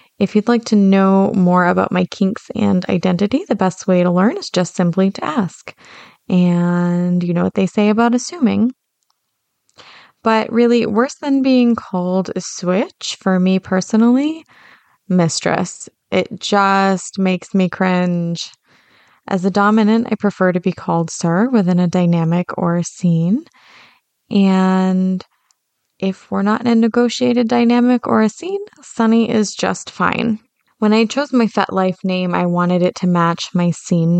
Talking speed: 160 wpm